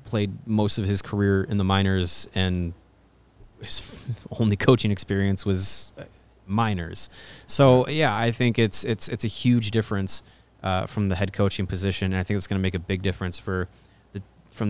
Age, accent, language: 20-39, American, English